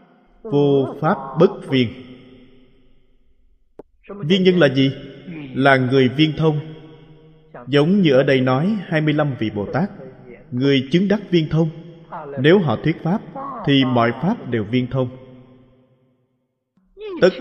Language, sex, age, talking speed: Vietnamese, male, 20-39, 130 wpm